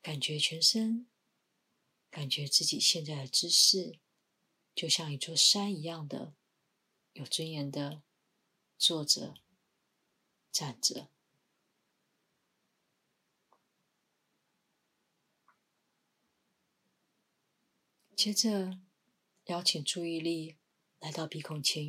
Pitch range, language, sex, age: 150-185 Hz, Chinese, female, 30-49